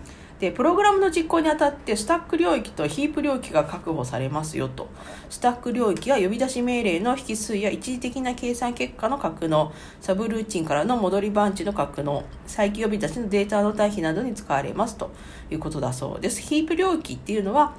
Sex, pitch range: female, 185-260 Hz